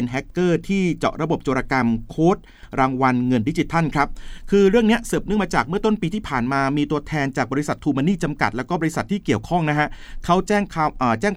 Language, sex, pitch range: Thai, male, 130-175 Hz